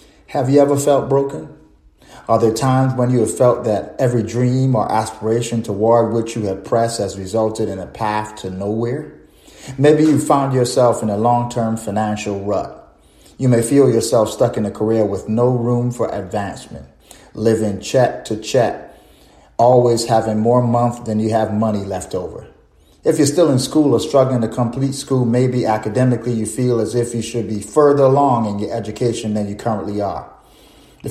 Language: English